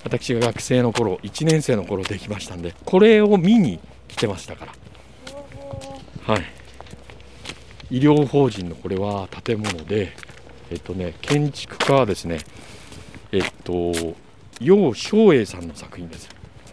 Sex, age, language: male, 50-69, Japanese